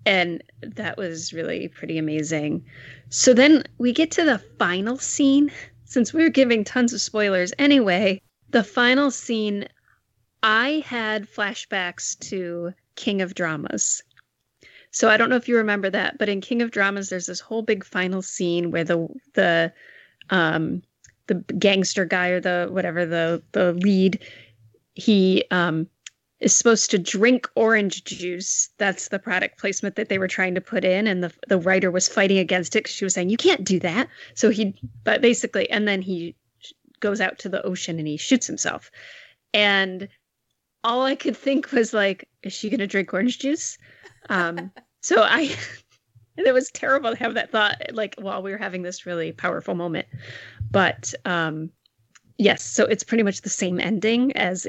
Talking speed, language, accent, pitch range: 175 wpm, English, American, 180-230 Hz